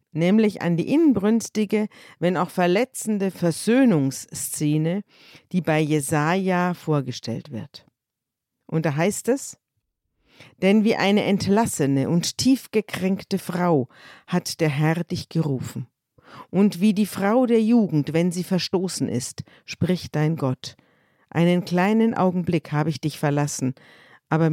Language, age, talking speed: German, 50-69, 120 wpm